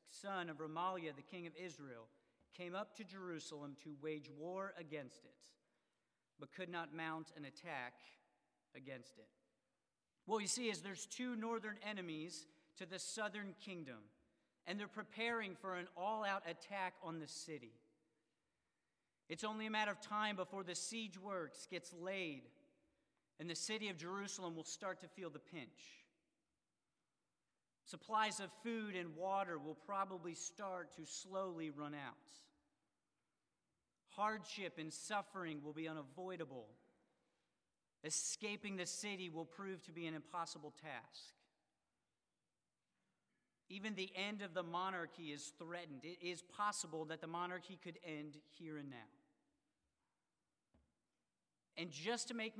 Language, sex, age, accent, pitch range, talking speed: English, male, 40-59, American, 155-200 Hz, 135 wpm